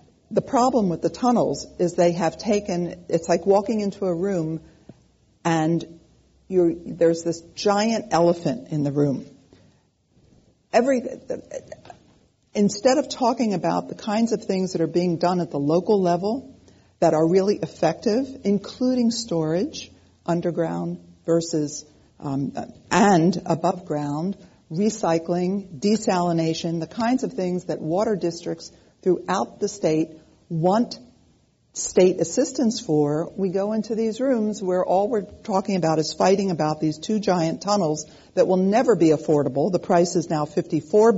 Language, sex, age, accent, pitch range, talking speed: English, female, 50-69, American, 160-210 Hz, 135 wpm